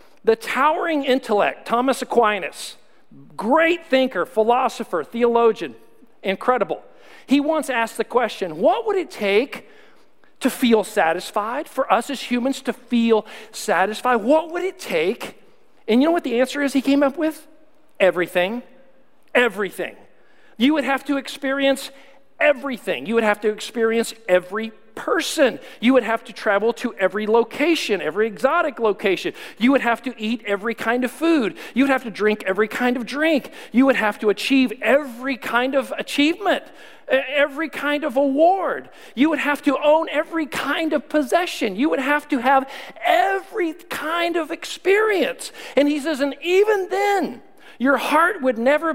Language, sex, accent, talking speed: English, male, American, 160 wpm